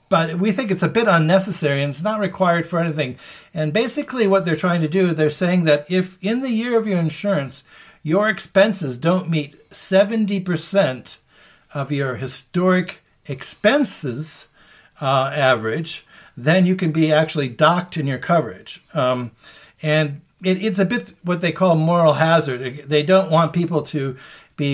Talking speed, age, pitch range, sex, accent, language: 160 wpm, 50-69, 130-180 Hz, male, American, English